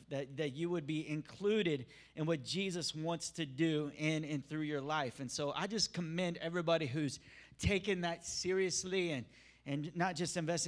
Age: 30-49